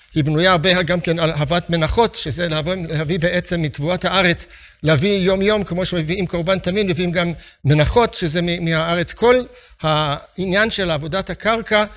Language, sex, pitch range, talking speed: Hebrew, male, 155-195 Hz, 150 wpm